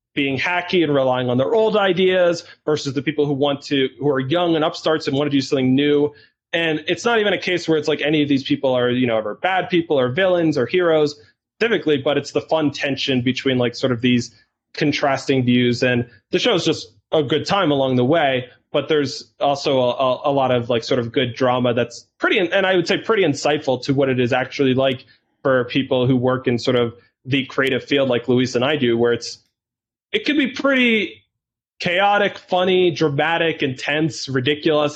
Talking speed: 215 wpm